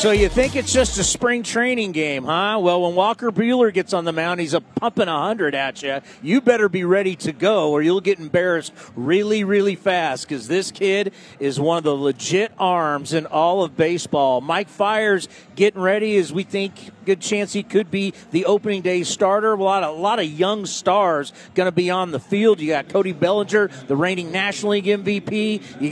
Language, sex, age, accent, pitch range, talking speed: English, male, 40-59, American, 170-220 Hz, 210 wpm